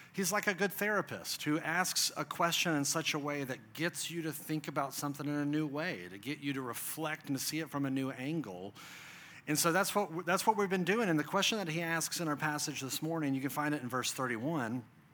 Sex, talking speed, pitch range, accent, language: male, 255 wpm, 140-170 Hz, American, English